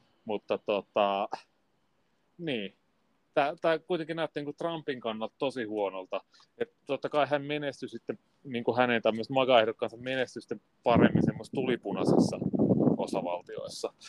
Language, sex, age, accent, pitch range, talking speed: Finnish, male, 30-49, native, 110-150 Hz, 105 wpm